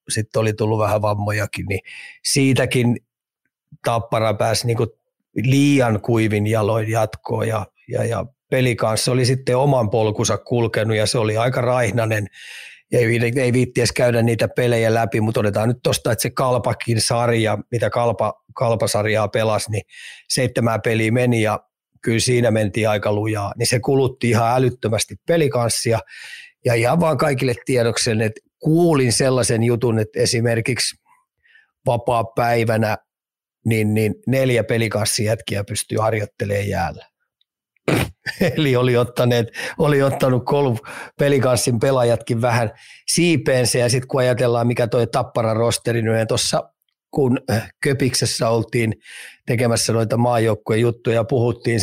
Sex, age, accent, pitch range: male, 30-49, native, 110-125 Hz